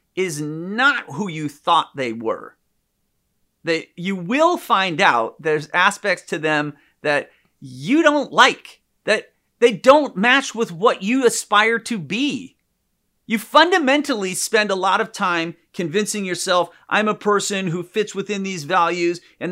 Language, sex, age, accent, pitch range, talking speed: English, male, 40-59, American, 160-225 Hz, 150 wpm